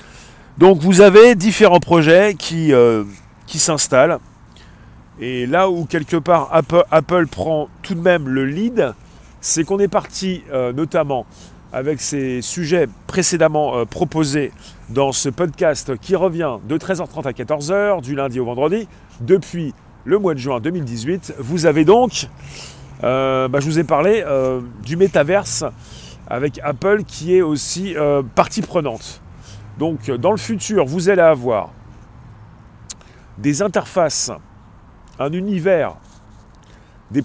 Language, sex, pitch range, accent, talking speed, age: French, male, 120-175 Hz, French, 135 wpm, 40-59